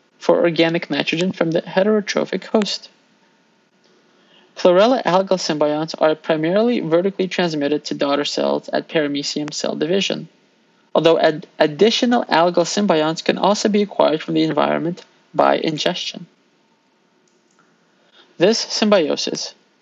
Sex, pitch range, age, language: male, 155-195 Hz, 30-49, English